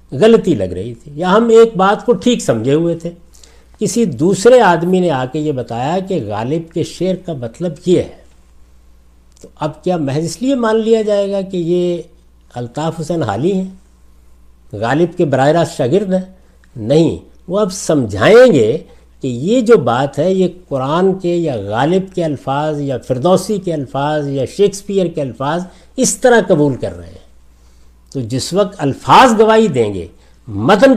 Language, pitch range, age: Urdu, 115-185 Hz, 60-79